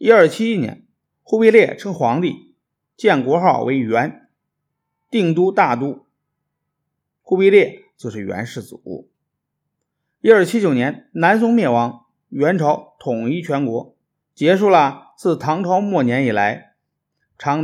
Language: Chinese